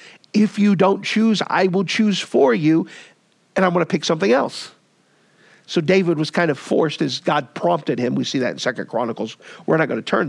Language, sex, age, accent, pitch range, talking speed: English, male, 50-69, American, 165-230 Hz, 215 wpm